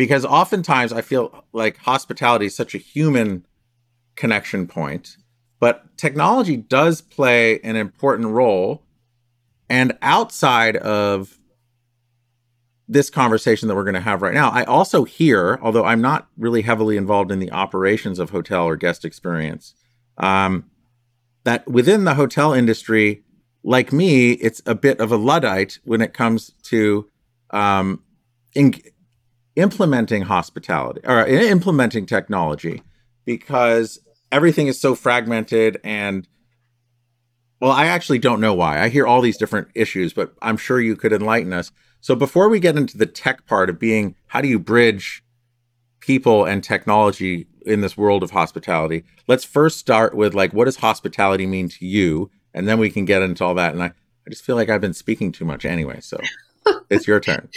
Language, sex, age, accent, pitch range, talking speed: English, male, 40-59, American, 105-125 Hz, 160 wpm